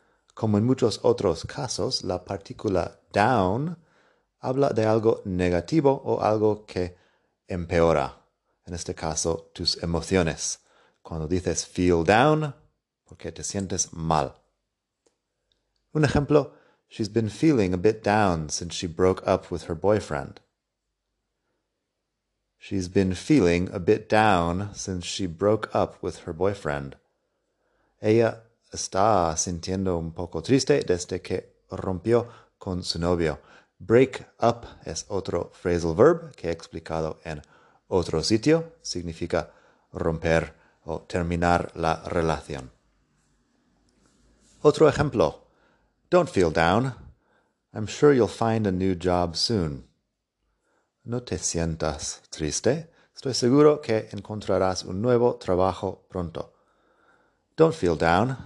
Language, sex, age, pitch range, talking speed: Spanish, male, 30-49, 85-110 Hz, 120 wpm